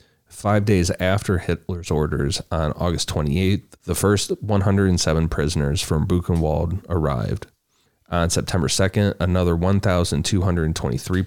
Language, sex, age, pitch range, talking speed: English, male, 30-49, 80-95 Hz, 105 wpm